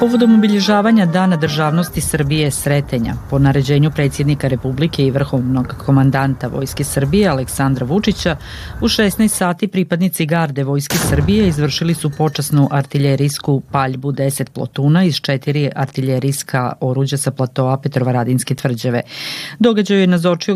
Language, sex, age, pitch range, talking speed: Croatian, female, 40-59, 135-165 Hz, 125 wpm